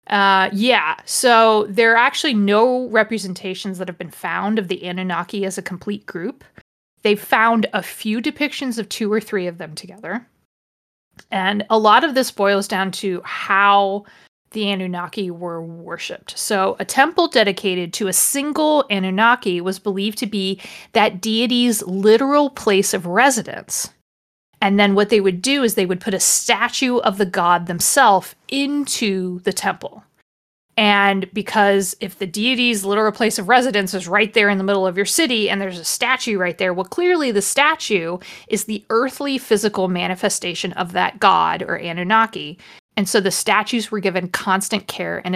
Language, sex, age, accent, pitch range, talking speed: English, female, 30-49, American, 190-230 Hz, 170 wpm